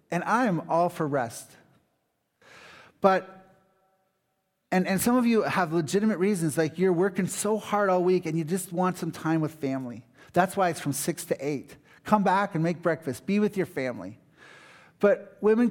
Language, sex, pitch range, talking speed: English, male, 145-185 Hz, 185 wpm